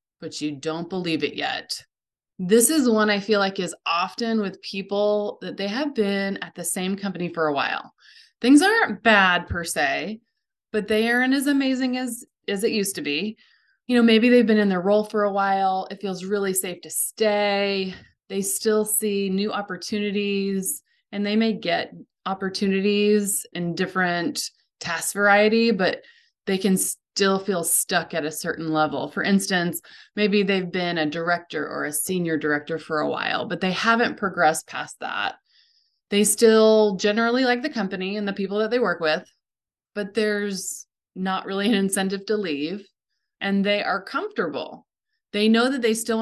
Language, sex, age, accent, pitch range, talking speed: English, female, 20-39, American, 180-220 Hz, 175 wpm